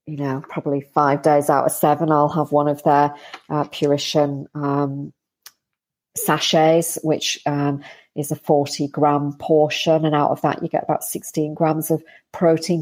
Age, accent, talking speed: 40-59, British, 165 wpm